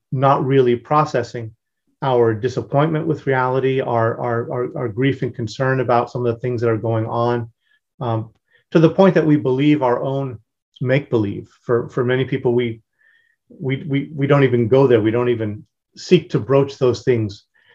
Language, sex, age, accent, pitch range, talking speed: English, male, 40-59, American, 115-135 Hz, 180 wpm